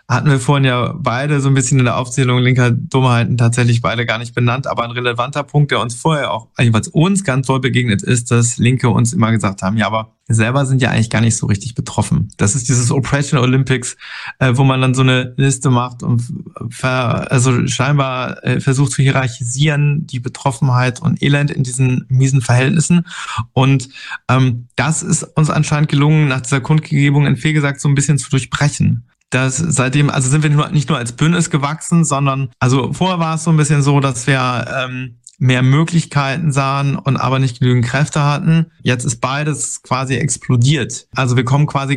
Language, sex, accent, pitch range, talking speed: German, male, German, 125-150 Hz, 195 wpm